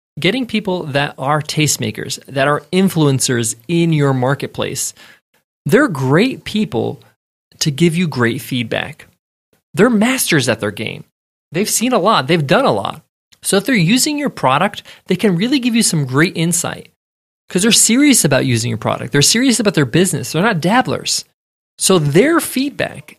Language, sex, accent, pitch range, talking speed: English, male, American, 135-200 Hz, 165 wpm